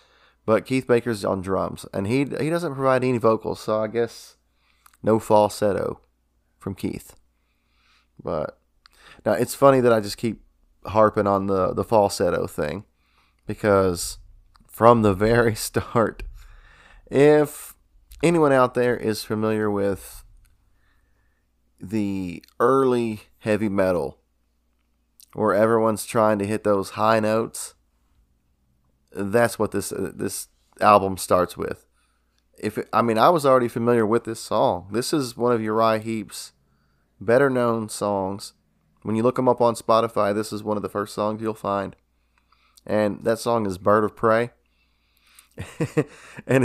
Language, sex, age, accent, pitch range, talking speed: English, male, 20-39, American, 80-115 Hz, 140 wpm